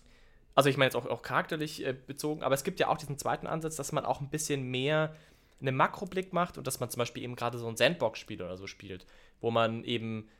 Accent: German